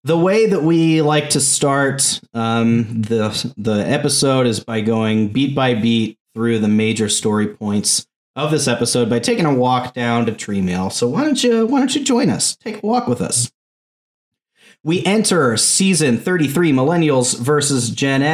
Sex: male